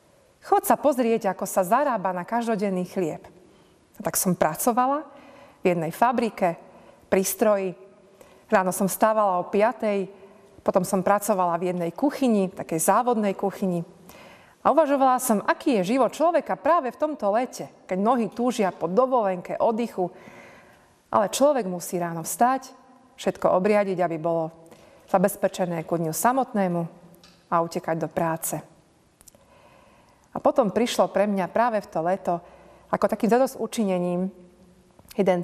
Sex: female